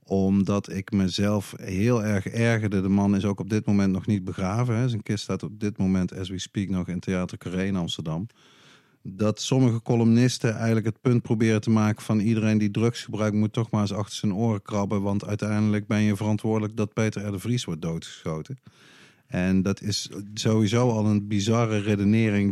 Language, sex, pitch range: Dutch, male, 95-115 Hz